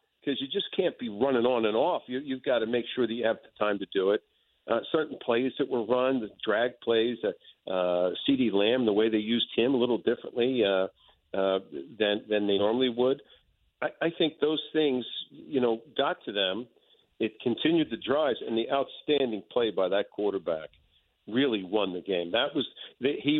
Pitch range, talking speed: 105-140 Hz, 200 wpm